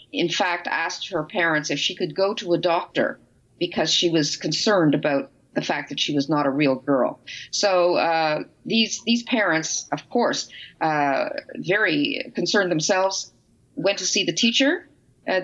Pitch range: 170-220 Hz